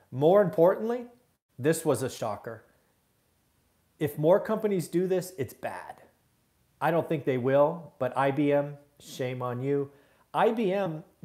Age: 40-59